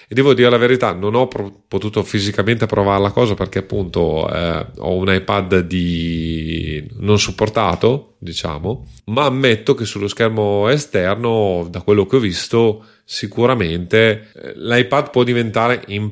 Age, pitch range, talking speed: 30-49, 95-115 Hz, 145 wpm